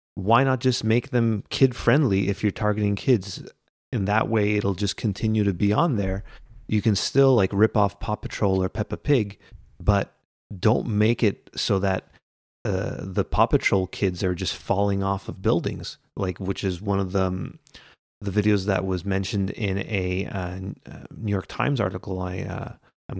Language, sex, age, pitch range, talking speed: English, male, 30-49, 95-110 Hz, 185 wpm